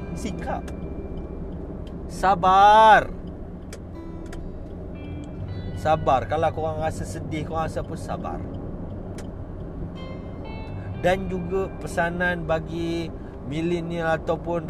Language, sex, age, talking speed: Malay, male, 40-59, 70 wpm